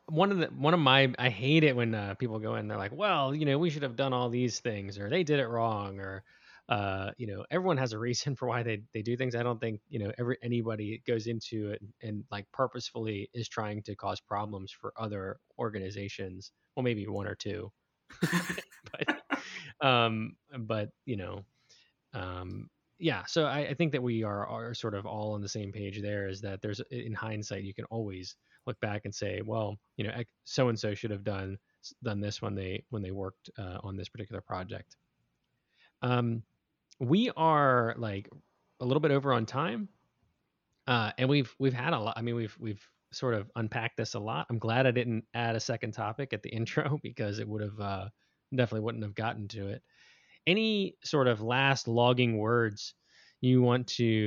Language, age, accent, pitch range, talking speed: English, 20-39, American, 105-125 Hz, 205 wpm